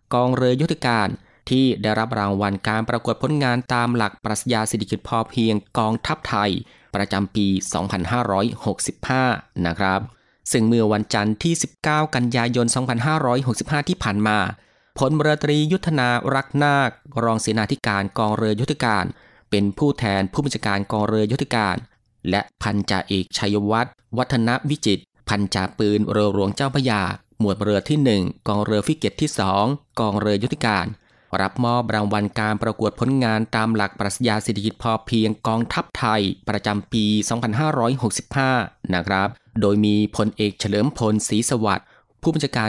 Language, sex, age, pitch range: Thai, male, 20-39, 105-125 Hz